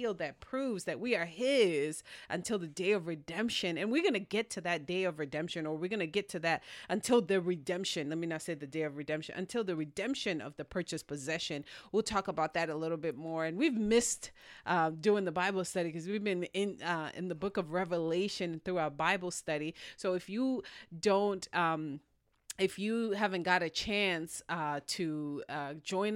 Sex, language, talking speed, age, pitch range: female, English, 210 wpm, 30-49, 155-200 Hz